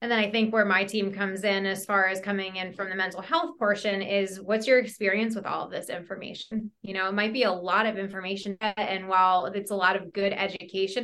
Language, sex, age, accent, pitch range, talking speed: English, female, 20-39, American, 190-220 Hz, 250 wpm